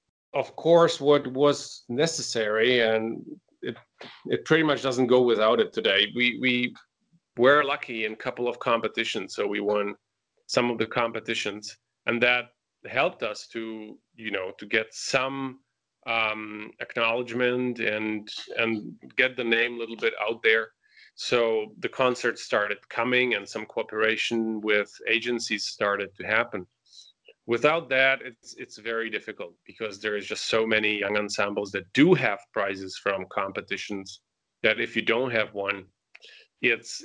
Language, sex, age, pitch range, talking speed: English, male, 30-49, 110-130 Hz, 150 wpm